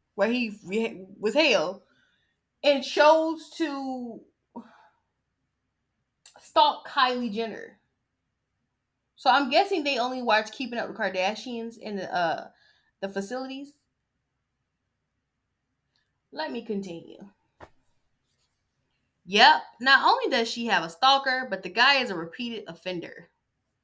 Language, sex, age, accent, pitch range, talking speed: English, female, 10-29, American, 195-280 Hz, 105 wpm